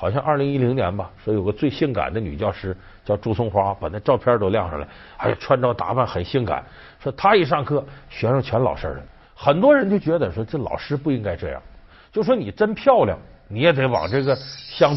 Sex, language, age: male, Chinese, 50-69